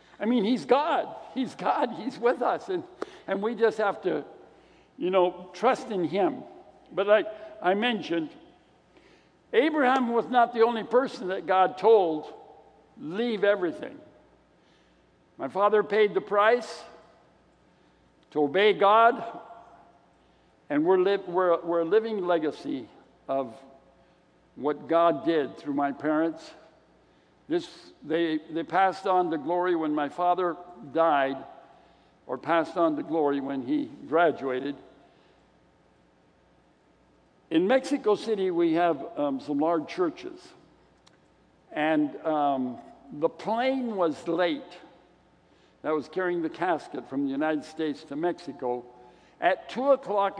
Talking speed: 125 wpm